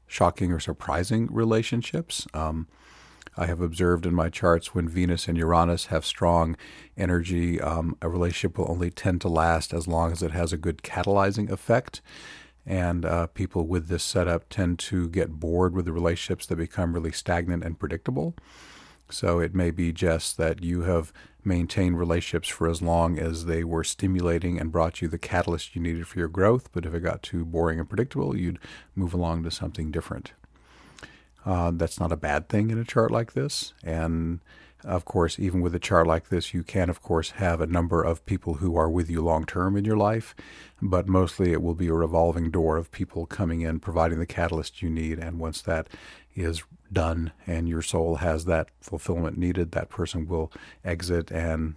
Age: 40-59